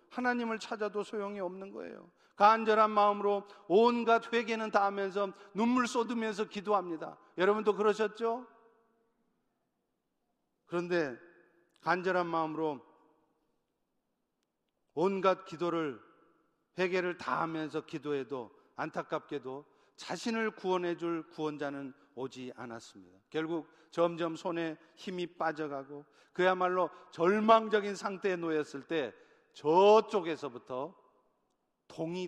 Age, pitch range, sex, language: 40-59, 160-215 Hz, male, Korean